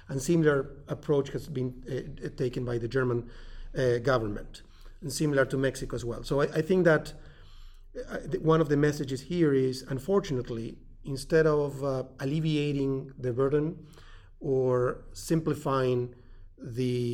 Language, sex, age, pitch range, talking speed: English, male, 40-59, 125-150 Hz, 135 wpm